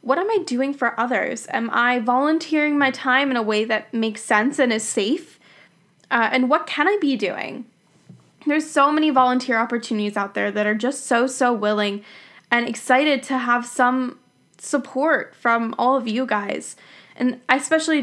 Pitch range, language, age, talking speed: 215-270 Hz, English, 10-29, 175 wpm